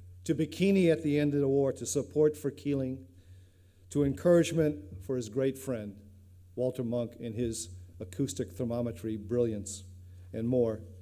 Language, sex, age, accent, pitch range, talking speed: English, male, 50-69, American, 95-140 Hz, 145 wpm